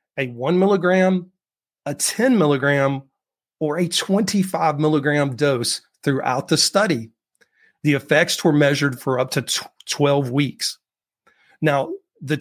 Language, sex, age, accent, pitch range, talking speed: English, male, 40-59, American, 140-170 Hz, 120 wpm